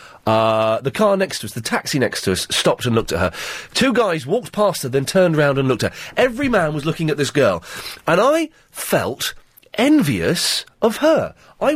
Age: 40-59